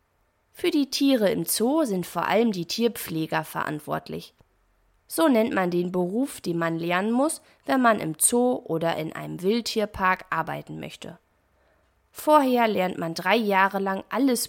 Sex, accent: female, German